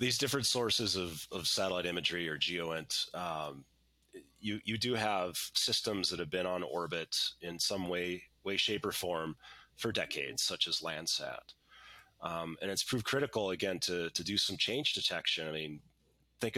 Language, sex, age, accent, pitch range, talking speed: English, male, 30-49, American, 85-105 Hz, 170 wpm